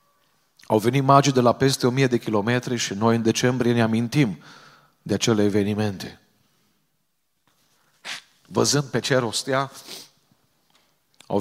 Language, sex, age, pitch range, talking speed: Romanian, male, 40-59, 105-140 Hz, 125 wpm